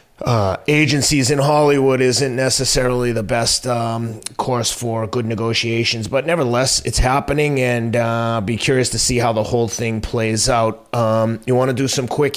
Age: 30-49